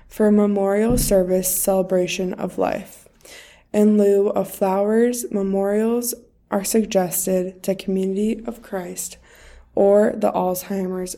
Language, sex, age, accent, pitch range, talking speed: English, female, 20-39, American, 185-225 Hz, 115 wpm